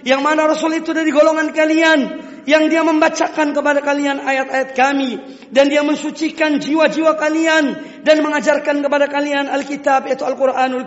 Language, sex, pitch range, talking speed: Indonesian, female, 260-305 Hz, 150 wpm